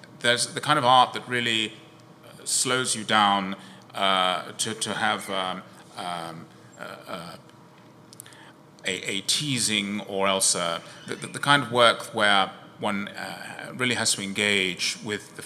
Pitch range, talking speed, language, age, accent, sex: 100-125 Hz, 150 wpm, English, 30-49, British, male